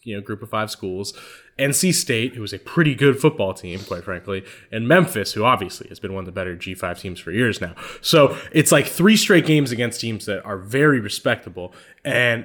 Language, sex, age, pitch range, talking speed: English, male, 20-39, 105-145 Hz, 215 wpm